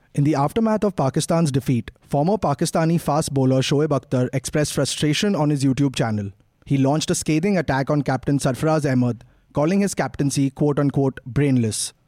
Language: English